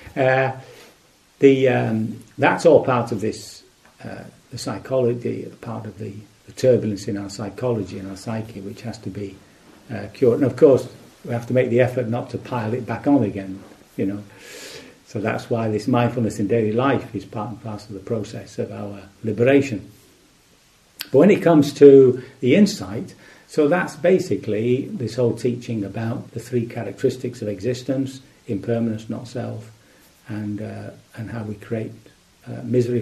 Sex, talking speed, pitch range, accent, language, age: male, 175 wpm, 105-130 Hz, British, English, 50-69